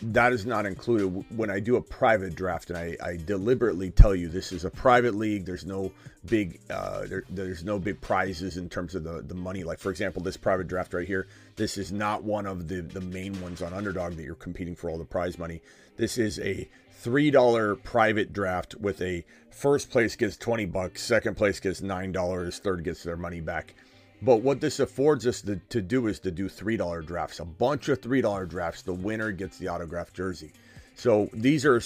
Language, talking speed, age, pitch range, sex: English, 215 wpm, 30-49, 90-110 Hz, male